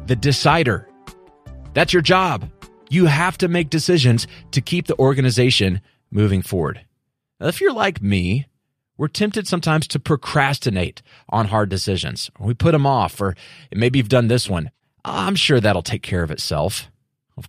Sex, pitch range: male, 100-140 Hz